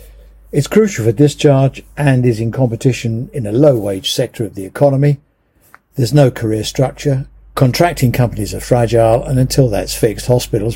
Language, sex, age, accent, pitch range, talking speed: English, male, 60-79, British, 115-145 Hz, 160 wpm